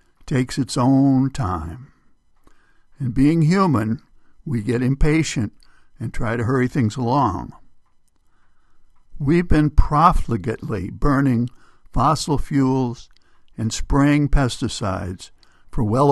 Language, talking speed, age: English, 100 wpm, 60-79